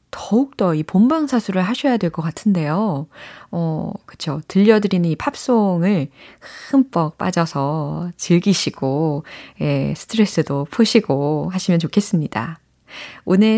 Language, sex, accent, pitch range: Korean, female, native, 165-270 Hz